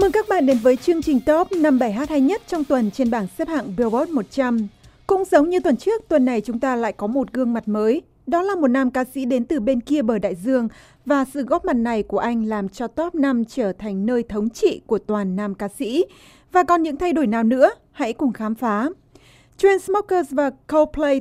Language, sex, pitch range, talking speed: Vietnamese, female, 230-310 Hz, 240 wpm